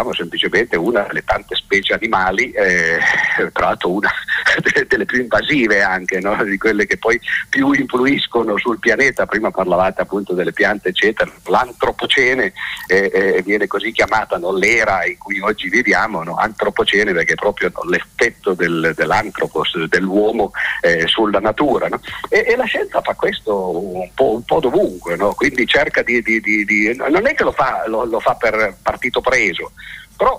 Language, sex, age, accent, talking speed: Italian, male, 50-69, native, 145 wpm